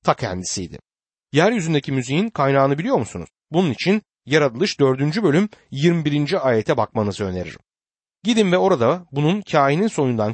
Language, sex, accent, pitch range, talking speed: Turkish, male, native, 110-175 Hz, 130 wpm